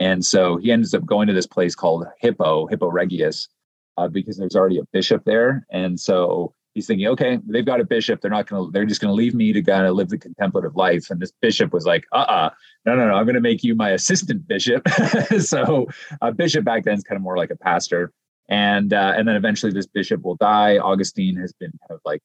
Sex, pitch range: male, 95-145 Hz